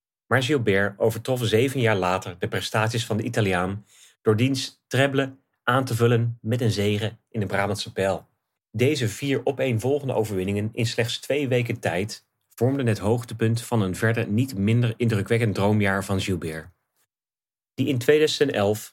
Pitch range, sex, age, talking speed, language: 105-125 Hz, male, 30-49, 150 wpm, Dutch